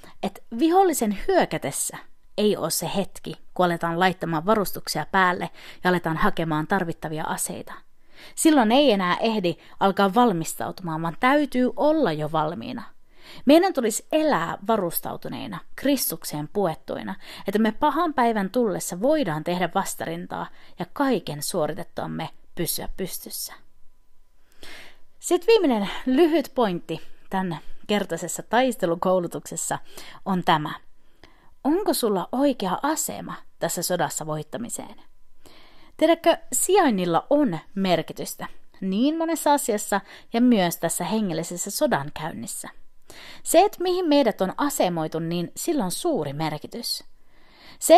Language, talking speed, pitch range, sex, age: Finnish, 110 wpm, 170-280 Hz, female, 30-49